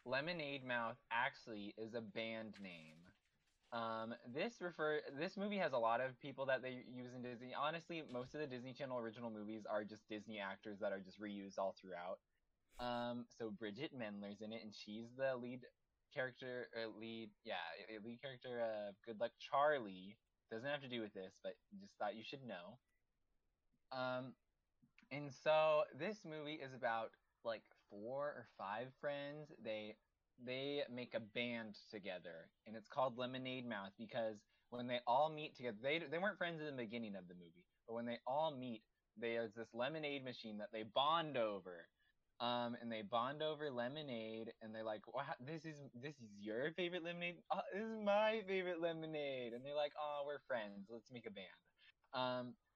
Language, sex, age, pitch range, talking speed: English, male, 20-39, 110-145 Hz, 180 wpm